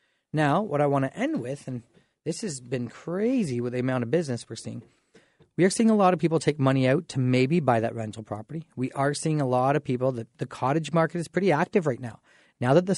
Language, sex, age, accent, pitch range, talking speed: English, male, 30-49, American, 125-170 Hz, 250 wpm